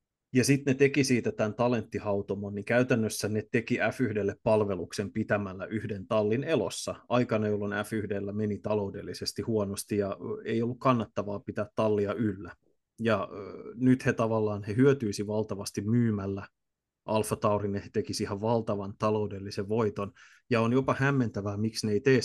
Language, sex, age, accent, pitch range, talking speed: Finnish, male, 30-49, native, 105-120 Hz, 145 wpm